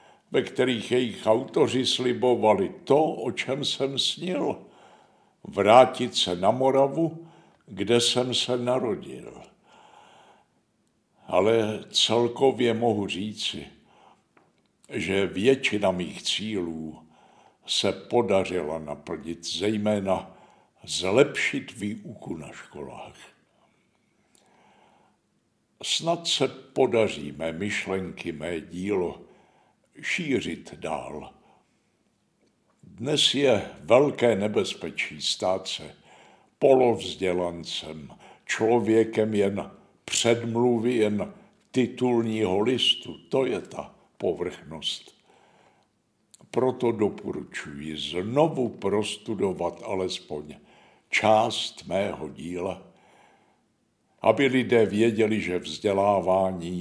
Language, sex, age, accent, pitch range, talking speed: Czech, male, 60-79, native, 95-125 Hz, 75 wpm